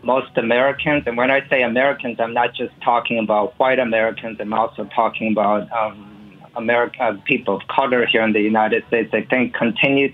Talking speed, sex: 185 wpm, male